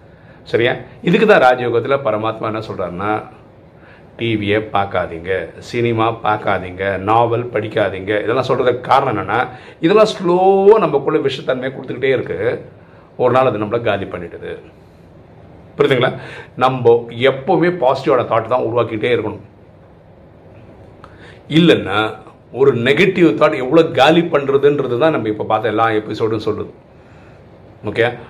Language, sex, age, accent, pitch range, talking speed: Tamil, male, 50-69, native, 105-140 Hz, 100 wpm